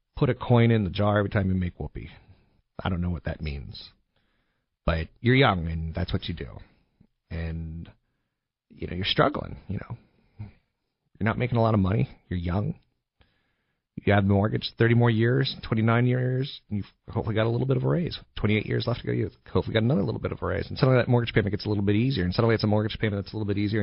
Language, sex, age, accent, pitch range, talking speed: English, male, 40-59, American, 95-115 Hz, 245 wpm